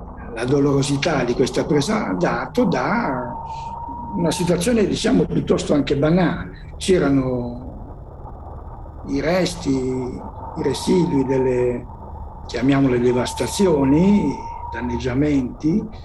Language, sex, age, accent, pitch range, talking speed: Italian, male, 60-79, native, 120-150 Hz, 85 wpm